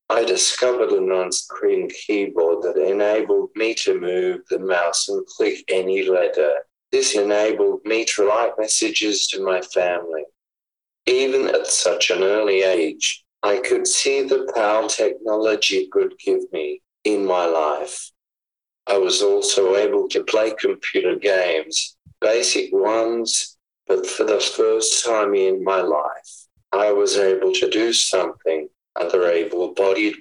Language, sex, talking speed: English, male, 140 wpm